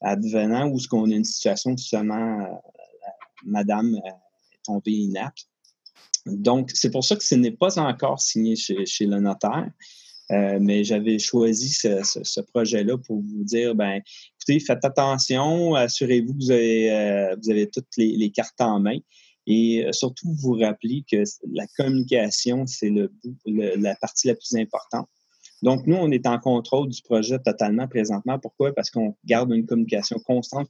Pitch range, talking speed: 105-125 Hz, 170 wpm